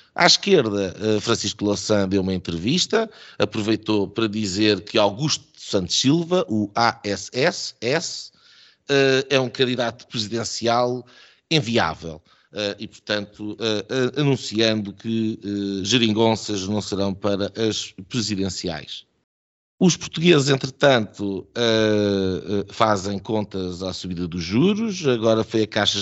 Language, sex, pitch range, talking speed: Portuguese, male, 100-125 Hz, 100 wpm